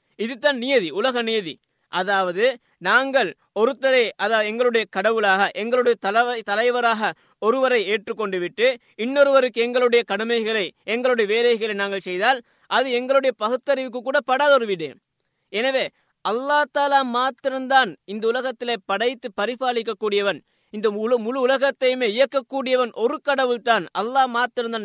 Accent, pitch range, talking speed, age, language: native, 210-260 Hz, 110 wpm, 20-39, Tamil